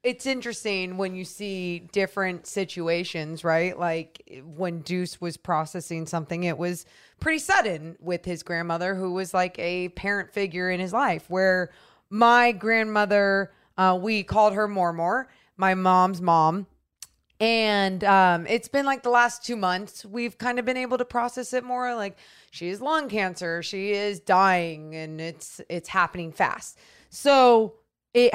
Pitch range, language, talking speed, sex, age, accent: 165-215 Hz, English, 155 wpm, female, 20-39, American